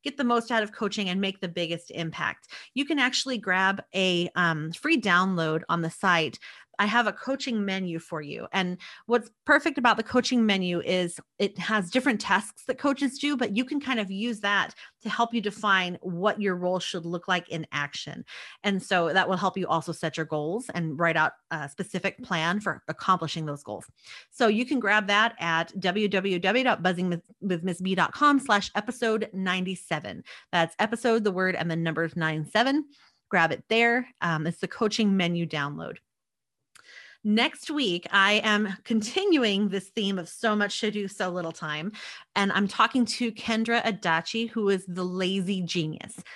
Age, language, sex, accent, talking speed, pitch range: 30-49, English, female, American, 175 wpm, 175-230 Hz